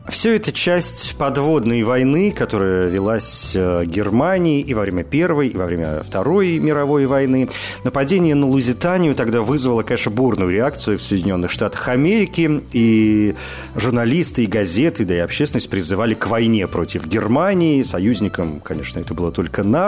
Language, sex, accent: Russian, male, native